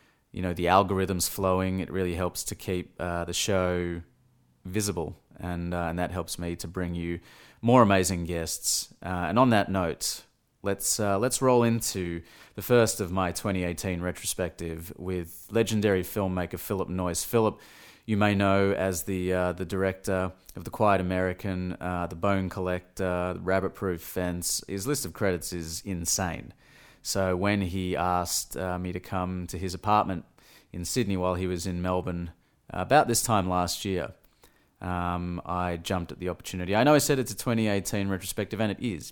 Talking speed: 175 wpm